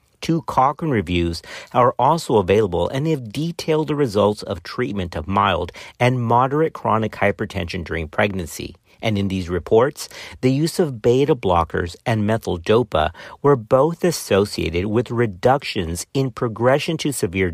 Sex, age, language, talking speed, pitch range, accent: male, 50-69, English, 145 wpm, 95-135 Hz, American